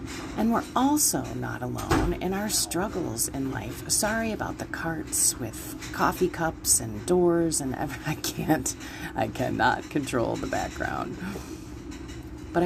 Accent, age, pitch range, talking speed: American, 40-59, 135-170 Hz, 135 wpm